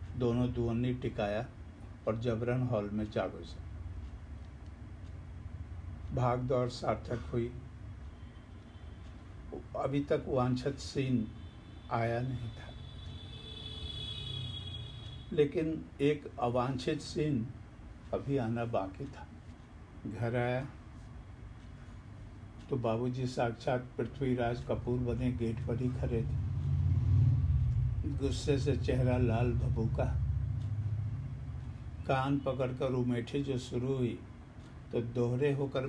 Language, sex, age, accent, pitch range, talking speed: Hindi, male, 60-79, native, 105-125 Hz, 90 wpm